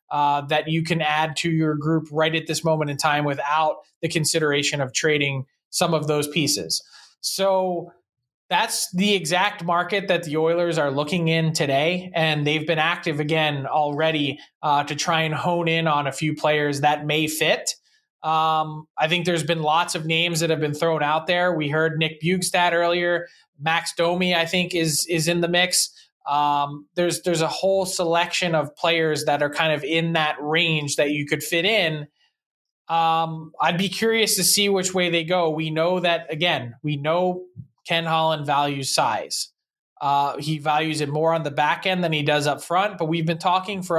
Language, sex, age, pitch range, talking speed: English, male, 20-39, 150-175 Hz, 190 wpm